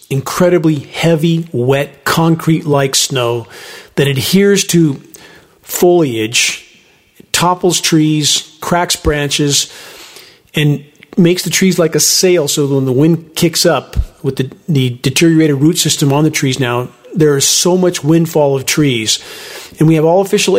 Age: 50-69